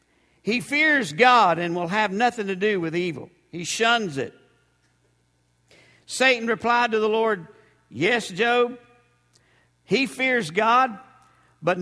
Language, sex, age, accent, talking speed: English, male, 50-69, American, 125 wpm